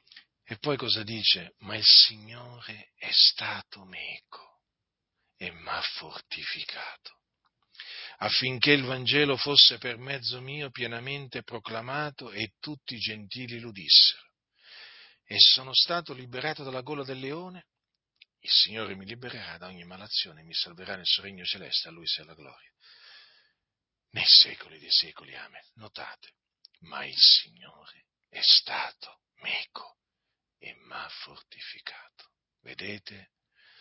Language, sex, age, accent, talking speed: Italian, male, 40-59, native, 130 wpm